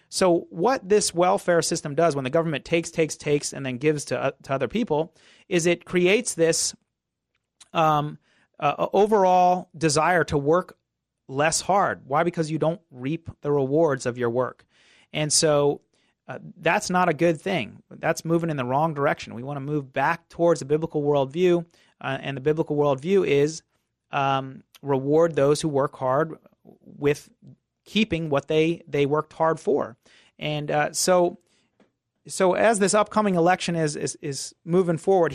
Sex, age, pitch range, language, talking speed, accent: male, 30-49, 145-175 Hz, English, 165 wpm, American